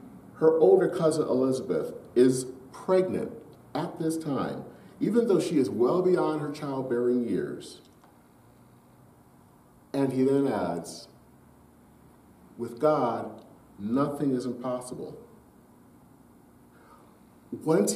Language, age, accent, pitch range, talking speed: English, 40-59, American, 120-155 Hz, 95 wpm